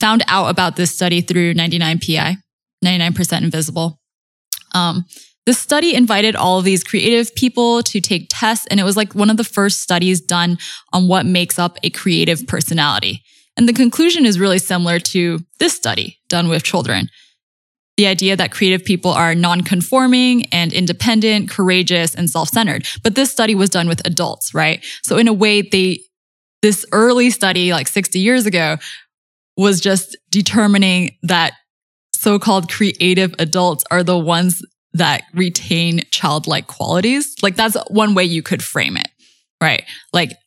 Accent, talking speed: American, 155 wpm